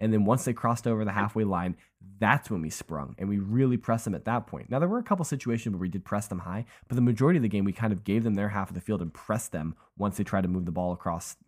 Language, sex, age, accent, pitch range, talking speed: English, male, 20-39, American, 95-125 Hz, 315 wpm